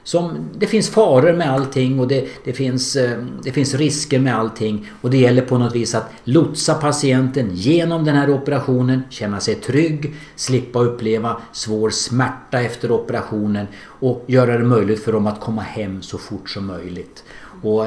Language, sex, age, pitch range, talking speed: Swedish, male, 50-69, 110-140 Hz, 170 wpm